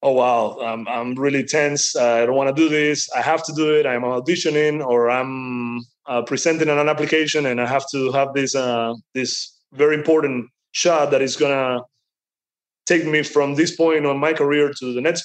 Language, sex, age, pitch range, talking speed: English, male, 20-39, 125-150 Hz, 205 wpm